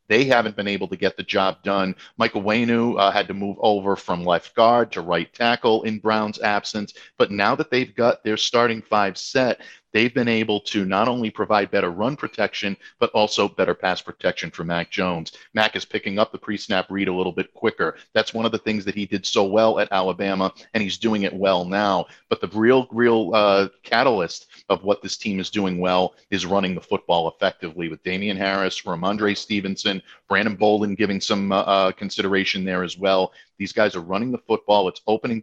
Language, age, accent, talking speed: English, 50-69, American, 205 wpm